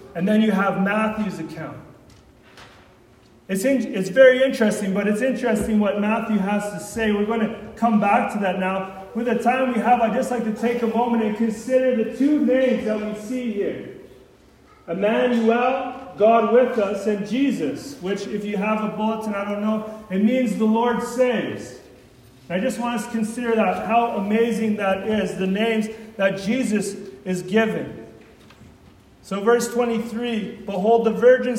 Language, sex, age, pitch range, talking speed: English, male, 40-59, 210-235 Hz, 175 wpm